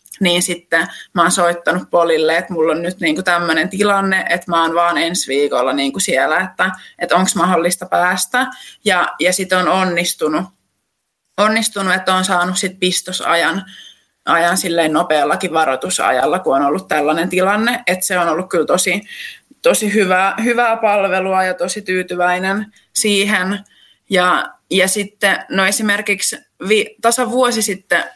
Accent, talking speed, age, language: native, 140 wpm, 20-39, Finnish